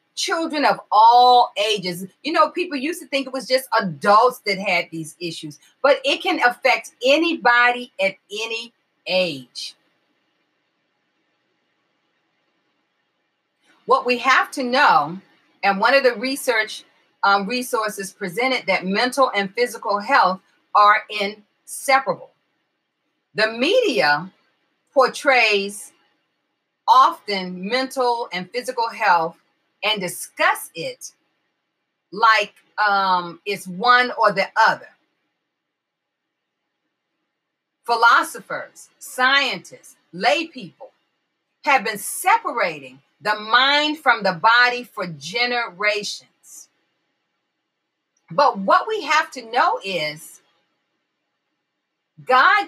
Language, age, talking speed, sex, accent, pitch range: English, 40-59, 100 wpm, female, American, 195-265 Hz